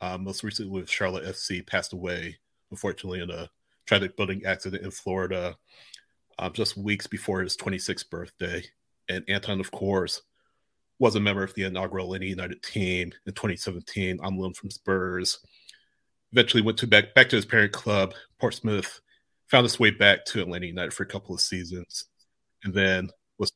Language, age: English, 30-49